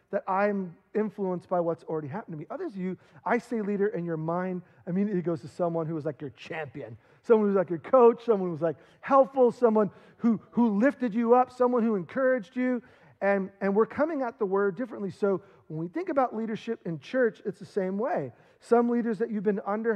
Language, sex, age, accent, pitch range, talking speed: English, male, 40-59, American, 170-230 Hz, 225 wpm